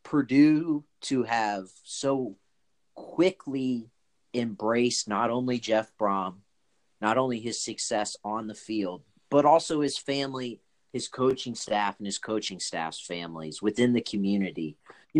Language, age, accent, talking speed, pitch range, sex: English, 30-49, American, 130 wpm, 100-135 Hz, male